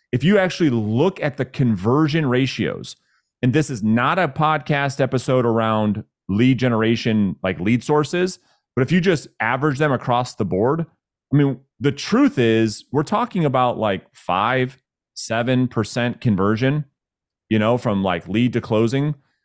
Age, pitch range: 30-49, 110-145 Hz